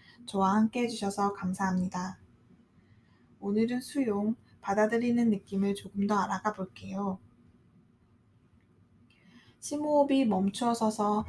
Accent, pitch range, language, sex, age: native, 190-230 Hz, Korean, female, 20-39